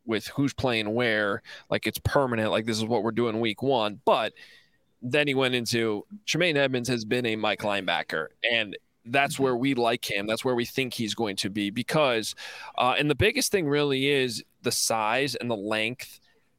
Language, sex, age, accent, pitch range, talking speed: English, male, 20-39, American, 115-135 Hz, 195 wpm